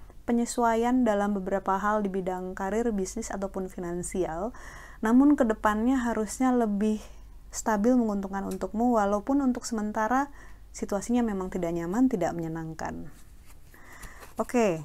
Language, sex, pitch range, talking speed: Indonesian, female, 180-235 Hz, 115 wpm